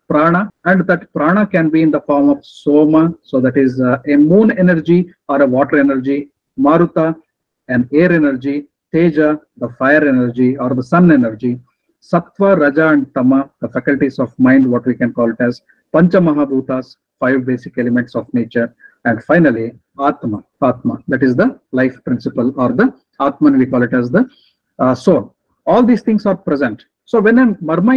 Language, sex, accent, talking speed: English, male, Indian, 180 wpm